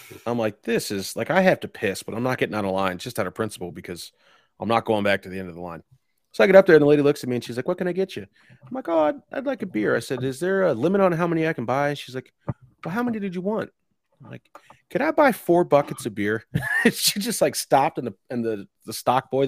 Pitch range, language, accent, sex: 105-160 Hz, English, American, male